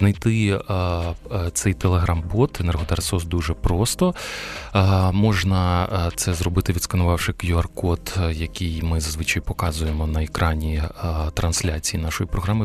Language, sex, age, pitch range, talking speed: Ukrainian, male, 20-39, 85-100 Hz, 115 wpm